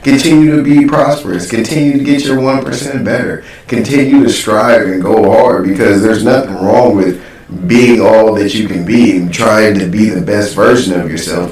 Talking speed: 190 wpm